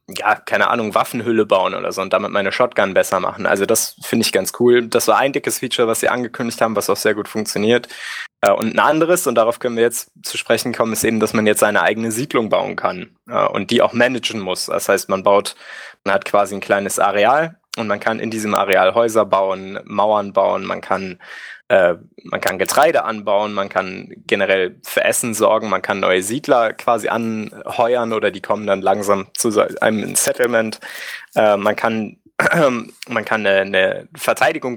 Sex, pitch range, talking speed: male, 100-120 Hz, 190 wpm